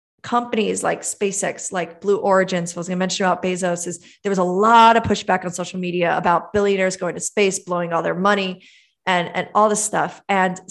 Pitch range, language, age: 180-225 Hz, English, 30-49